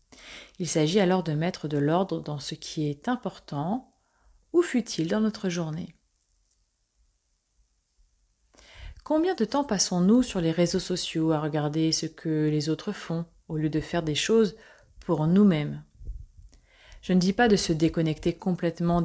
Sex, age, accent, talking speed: female, 30-49, French, 150 wpm